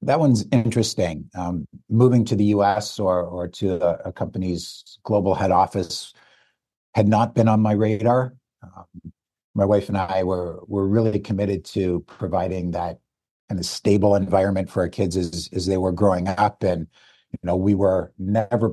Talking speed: 175 wpm